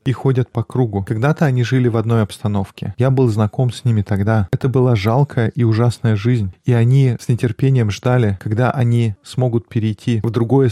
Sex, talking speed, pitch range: male, 185 wpm, 110-130 Hz